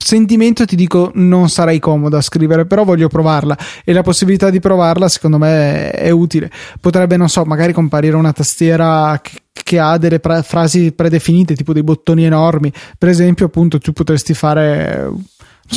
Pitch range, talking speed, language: 155-175 Hz, 170 wpm, Italian